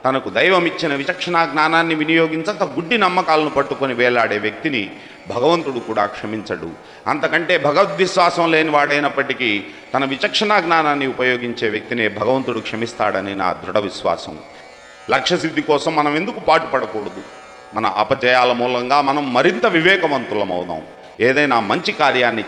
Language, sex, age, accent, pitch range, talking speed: Telugu, male, 40-59, native, 105-160 Hz, 110 wpm